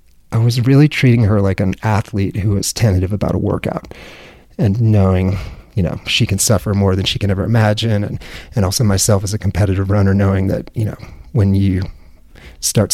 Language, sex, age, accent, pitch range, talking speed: English, male, 30-49, American, 95-110 Hz, 195 wpm